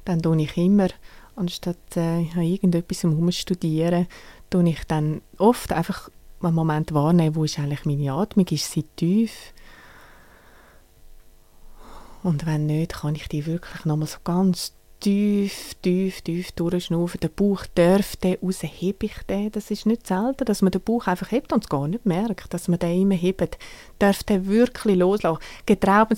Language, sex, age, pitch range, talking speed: German, female, 30-49, 175-210 Hz, 165 wpm